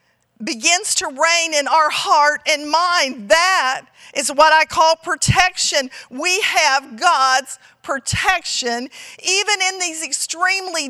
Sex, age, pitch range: female, 50-69, 265-340 Hz